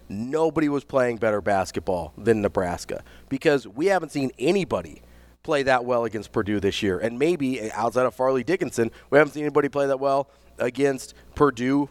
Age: 40-59